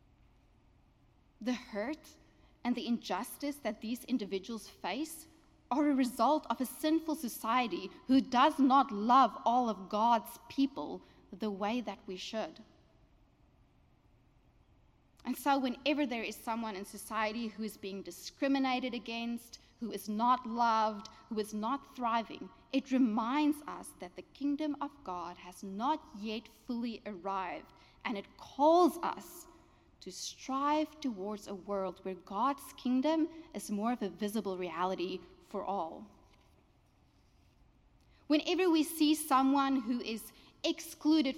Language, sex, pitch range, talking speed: English, female, 215-290 Hz, 130 wpm